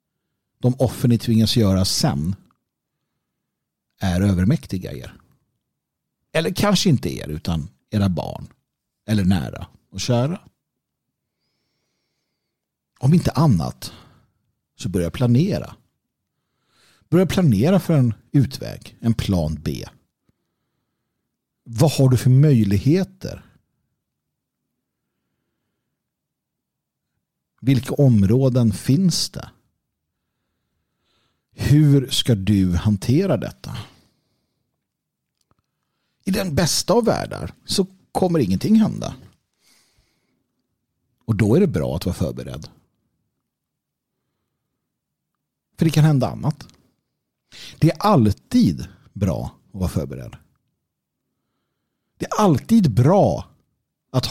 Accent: native